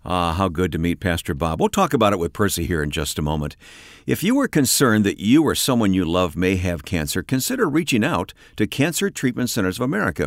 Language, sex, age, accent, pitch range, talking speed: English, male, 60-79, American, 85-130 Hz, 235 wpm